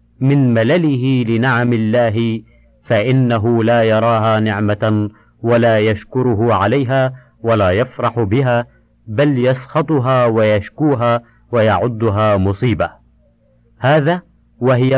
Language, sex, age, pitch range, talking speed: Arabic, male, 50-69, 110-135 Hz, 85 wpm